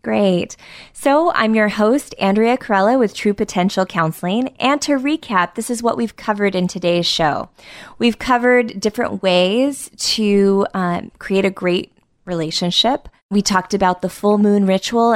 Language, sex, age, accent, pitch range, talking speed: English, female, 20-39, American, 175-225 Hz, 155 wpm